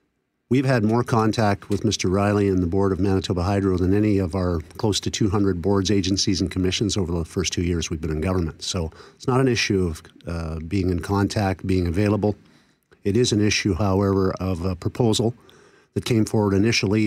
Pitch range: 95-110 Hz